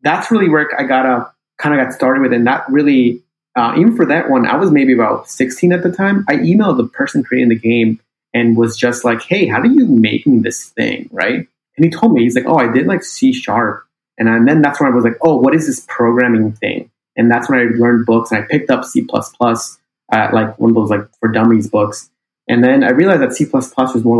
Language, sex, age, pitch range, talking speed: English, male, 30-49, 115-130 Hz, 260 wpm